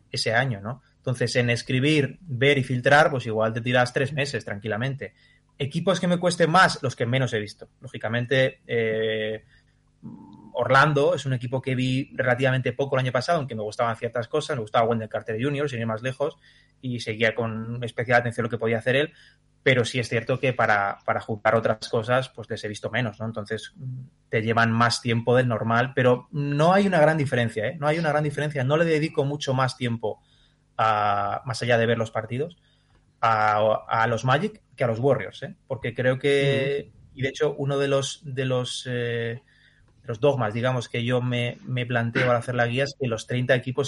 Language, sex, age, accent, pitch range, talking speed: Spanish, male, 20-39, Spanish, 115-140 Hz, 205 wpm